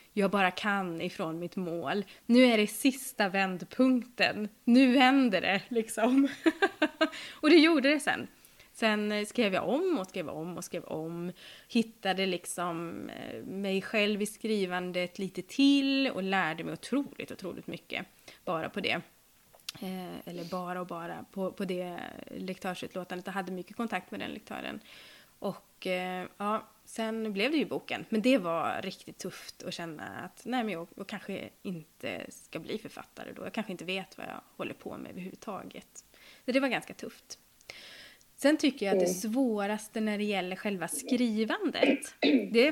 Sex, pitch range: female, 185-250 Hz